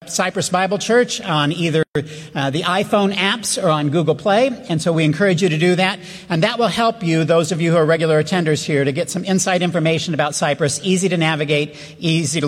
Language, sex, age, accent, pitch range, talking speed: English, male, 50-69, American, 150-185 Hz, 220 wpm